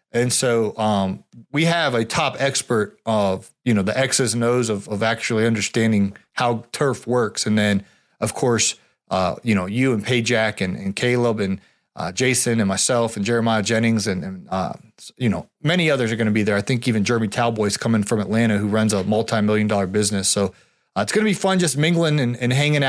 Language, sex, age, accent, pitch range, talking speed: English, male, 30-49, American, 110-135 Hz, 220 wpm